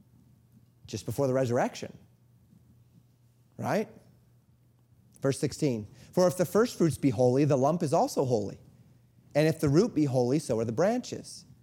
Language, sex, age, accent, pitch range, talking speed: English, male, 30-49, American, 125-180 Hz, 150 wpm